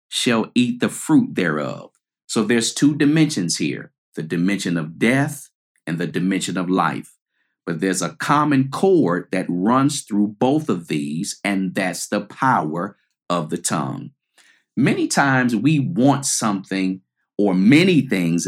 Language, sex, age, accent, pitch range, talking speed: English, male, 50-69, American, 95-155 Hz, 145 wpm